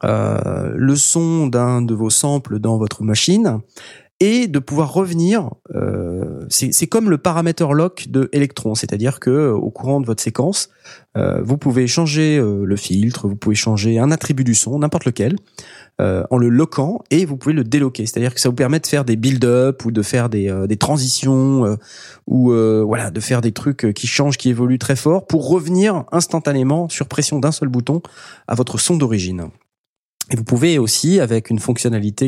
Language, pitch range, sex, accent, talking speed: French, 115-150 Hz, male, French, 195 wpm